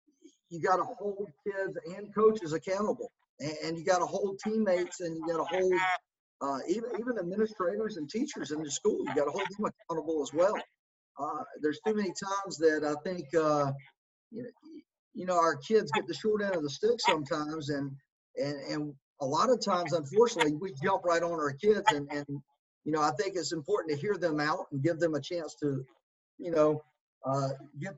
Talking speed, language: 205 wpm, English